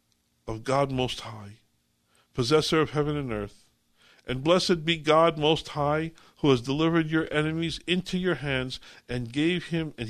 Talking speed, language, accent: 160 wpm, English, American